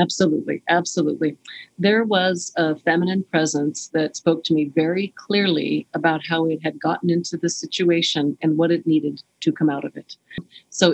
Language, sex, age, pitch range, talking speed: English, female, 40-59, 155-185 Hz, 170 wpm